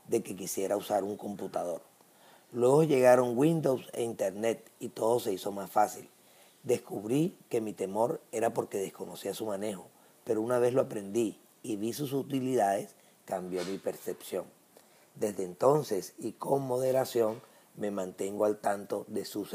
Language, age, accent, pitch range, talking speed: English, 40-59, American, 105-135 Hz, 150 wpm